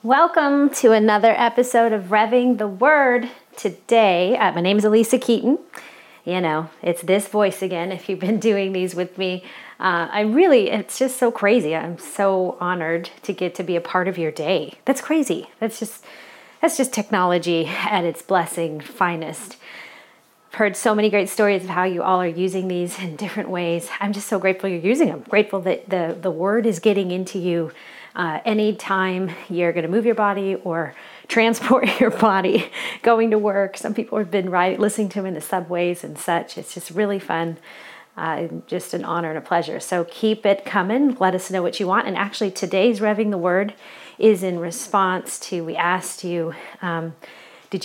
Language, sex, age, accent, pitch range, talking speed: English, female, 30-49, American, 180-220 Hz, 195 wpm